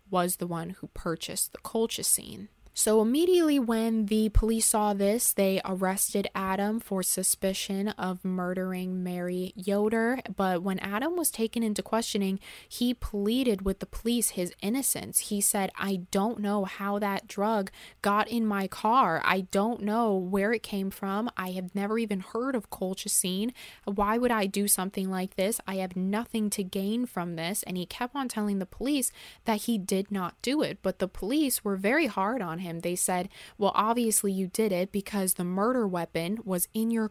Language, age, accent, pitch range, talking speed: English, 20-39, American, 185-225 Hz, 185 wpm